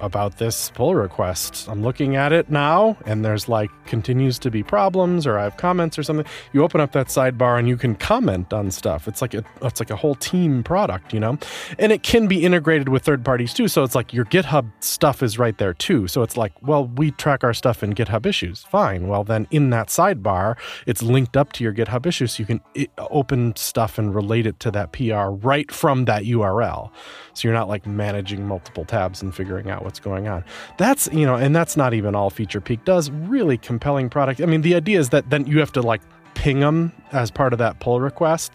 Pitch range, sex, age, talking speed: 110-150 Hz, male, 30-49, 225 wpm